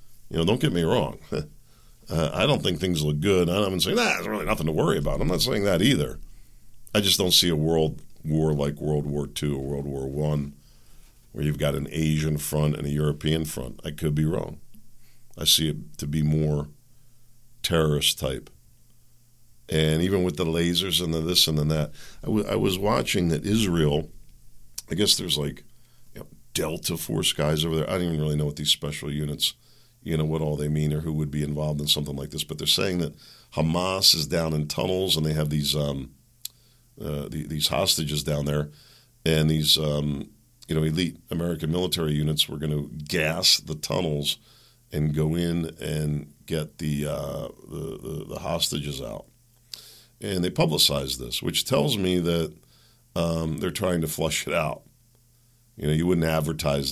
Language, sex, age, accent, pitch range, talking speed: English, male, 50-69, American, 75-95 Hz, 190 wpm